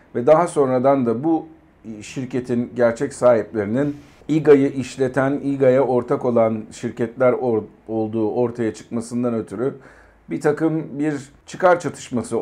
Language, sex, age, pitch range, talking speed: Turkish, male, 50-69, 110-140 Hz, 115 wpm